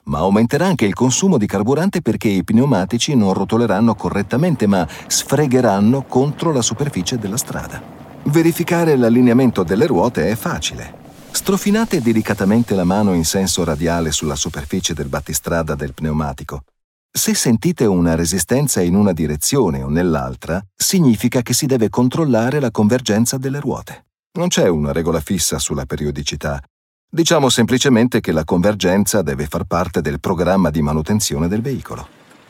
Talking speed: 145 wpm